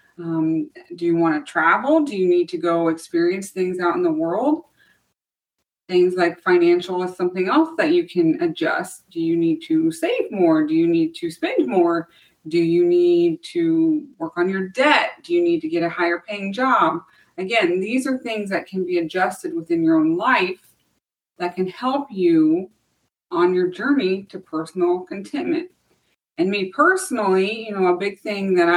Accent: American